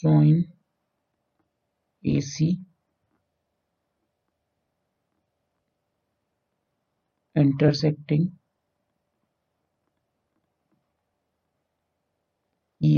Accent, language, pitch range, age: native, Hindi, 140-170 Hz, 60-79